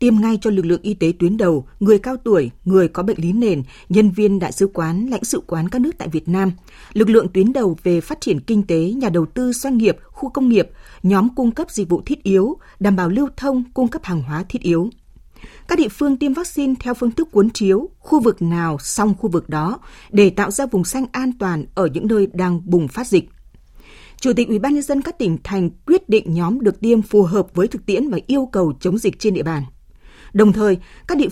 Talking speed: 240 wpm